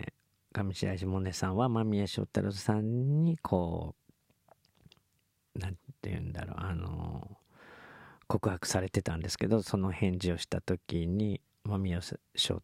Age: 40-59